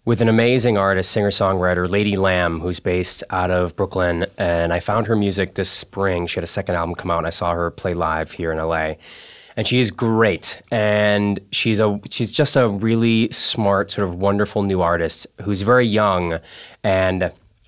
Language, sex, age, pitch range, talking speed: English, male, 20-39, 90-110 Hz, 185 wpm